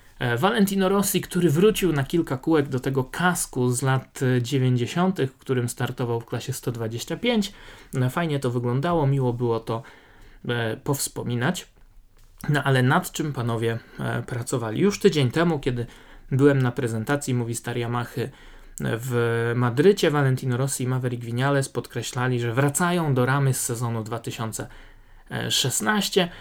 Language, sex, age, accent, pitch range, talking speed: Polish, male, 20-39, native, 125-170 Hz, 130 wpm